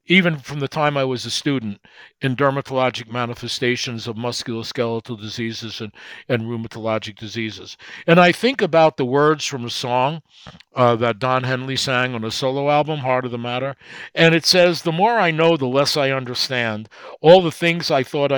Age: 50-69